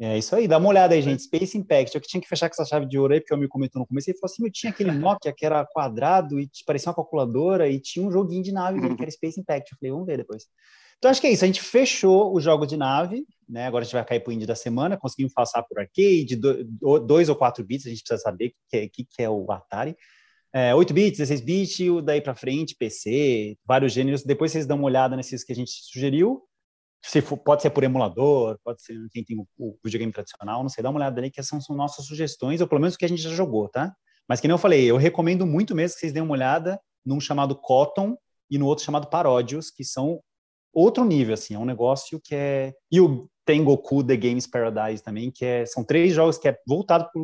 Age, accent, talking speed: 20-39, Brazilian, 255 wpm